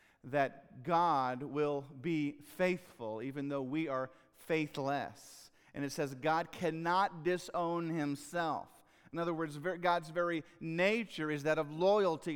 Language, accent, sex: English, American, male